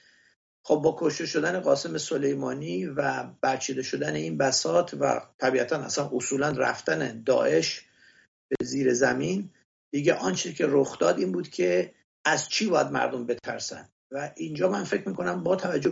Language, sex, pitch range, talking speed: English, male, 130-160 Hz, 150 wpm